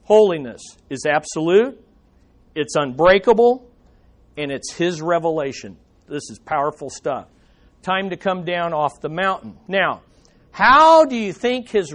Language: English